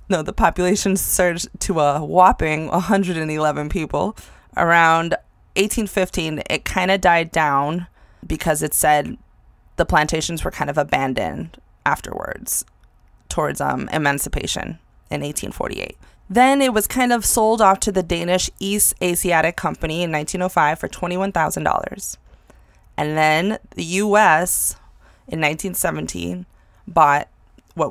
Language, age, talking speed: English, 20-39, 120 wpm